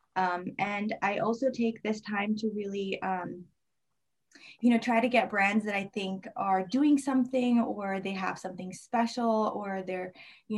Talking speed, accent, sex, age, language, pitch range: 170 wpm, American, female, 20-39, English, 185-225 Hz